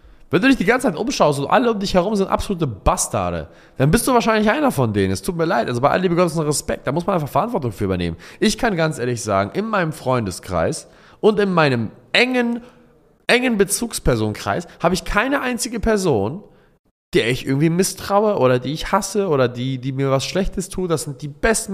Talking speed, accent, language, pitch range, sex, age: 215 wpm, German, German, 130-200 Hz, male, 20-39